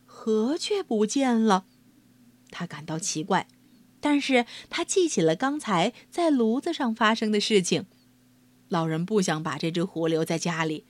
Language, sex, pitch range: Chinese, female, 155-245 Hz